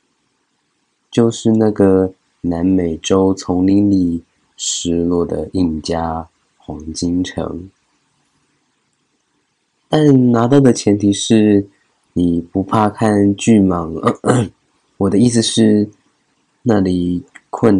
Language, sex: Chinese, male